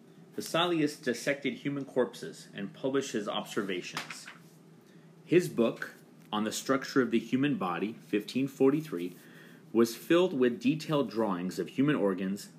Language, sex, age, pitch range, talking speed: English, male, 30-49, 100-145 Hz, 125 wpm